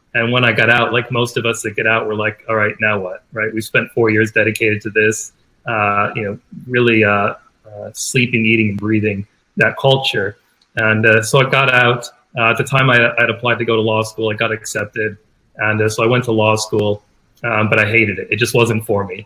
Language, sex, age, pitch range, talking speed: English, male, 30-49, 110-120 Hz, 240 wpm